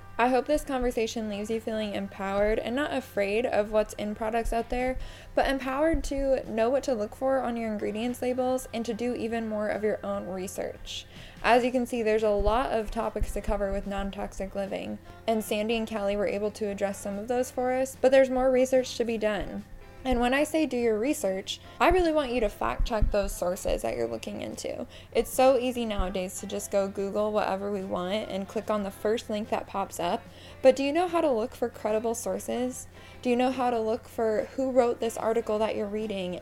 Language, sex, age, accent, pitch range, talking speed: English, female, 10-29, American, 205-255 Hz, 225 wpm